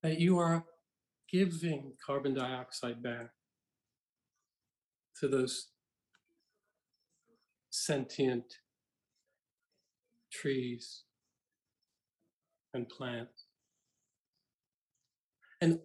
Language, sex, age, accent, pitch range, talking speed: English, male, 50-69, American, 135-175 Hz, 55 wpm